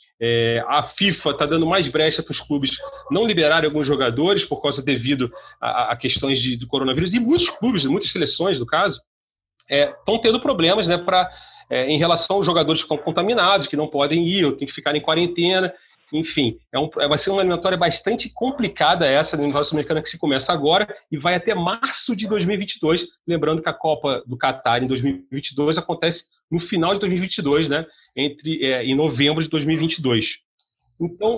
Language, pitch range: Portuguese, 140-195 Hz